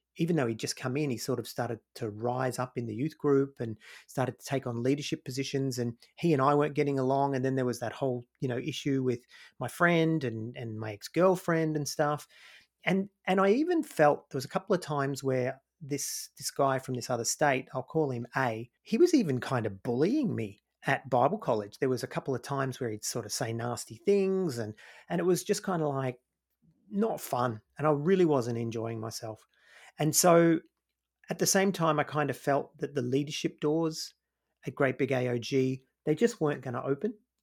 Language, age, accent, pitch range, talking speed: English, 30-49, Australian, 125-155 Hz, 215 wpm